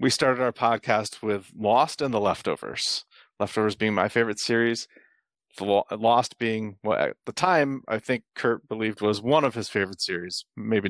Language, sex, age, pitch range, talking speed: English, male, 40-59, 105-130 Hz, 170 wpm